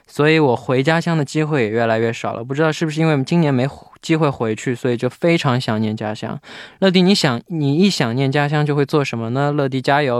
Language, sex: Chinese, male